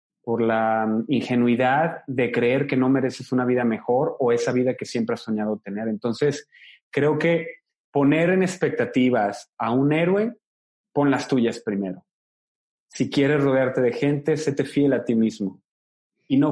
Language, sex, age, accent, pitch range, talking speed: Spanish, male, 30-49, Mexican, 125-160 Hz, 160 wpm